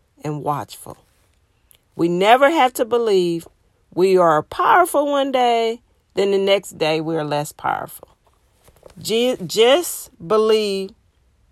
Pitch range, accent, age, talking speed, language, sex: 150-205 Hz, American, 40-59, 115 wpm, English, female